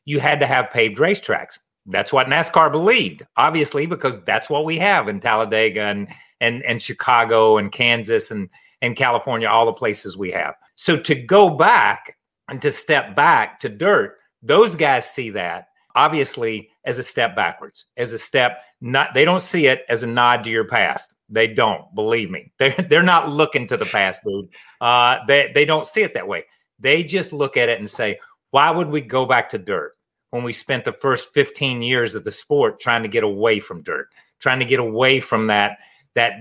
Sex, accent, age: male, American, 40-59